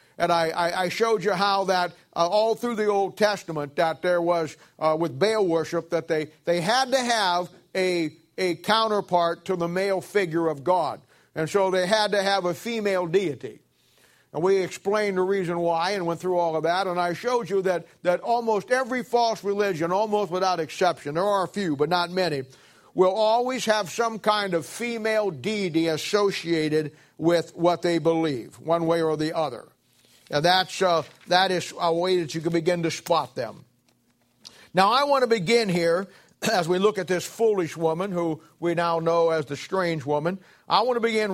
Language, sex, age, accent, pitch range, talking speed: English, male, 50-69, American, 165-200 Hz, 195 wpm